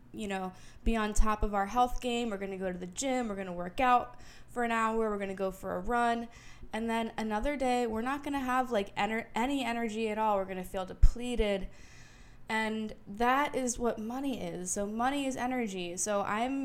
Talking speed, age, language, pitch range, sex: 225 wpm, 10-29, English, 190-240 Hz, female